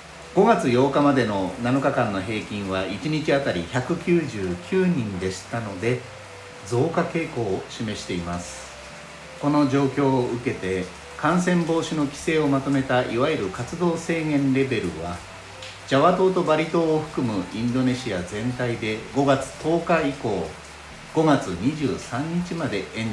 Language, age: Japanese, 60-79